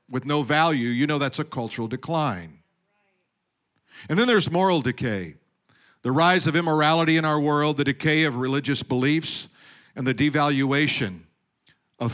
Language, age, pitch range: English, 50-69, 130-160 Hz